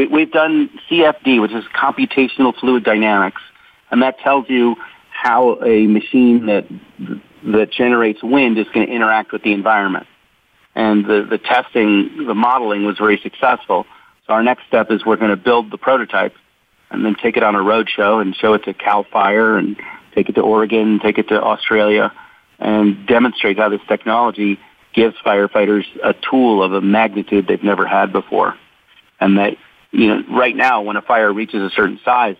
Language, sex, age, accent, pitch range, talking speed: English, male, 40-59, American, 100-120 Hz, 185 wpm